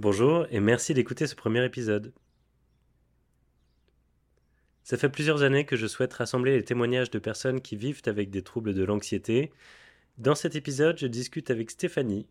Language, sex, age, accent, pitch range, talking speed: French, male, 20-39, French, 100-135 Hz, 160 wpm